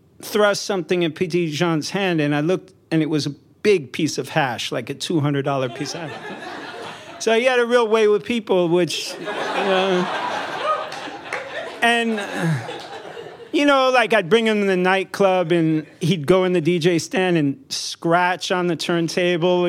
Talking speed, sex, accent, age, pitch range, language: 165 wpm, male, American, 40-59, 150-190 Hz, English